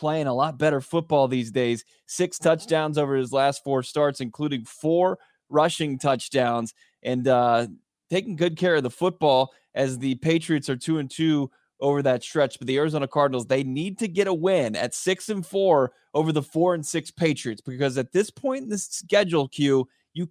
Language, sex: English, male